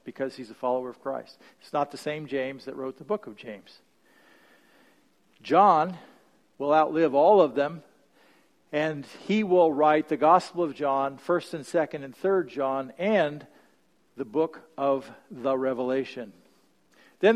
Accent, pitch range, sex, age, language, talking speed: American, 140-185 Hz, male, 50-69, English, 150 wpm